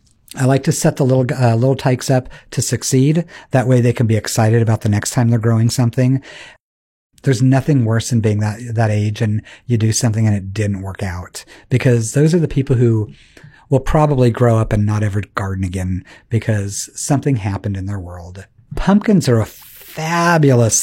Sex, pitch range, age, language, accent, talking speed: male, 115-150 Hz, 50-69, English, American, 195 wpm